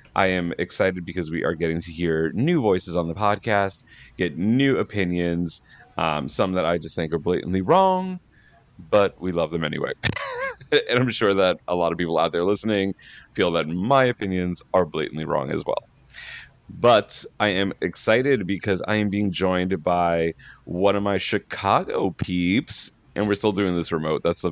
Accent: American